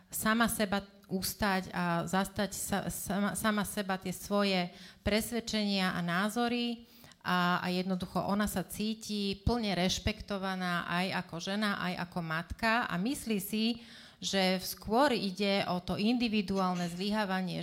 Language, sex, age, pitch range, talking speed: Slovak, female, 30-49, 180-210 Hz, 130 wpm